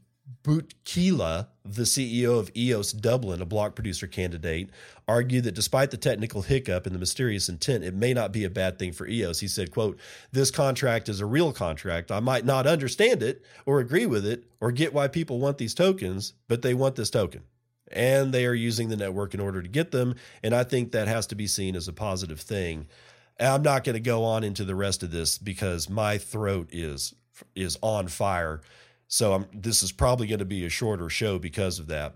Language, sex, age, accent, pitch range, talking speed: English, male, 40-59, American, 95-125 Hz, 215 wpm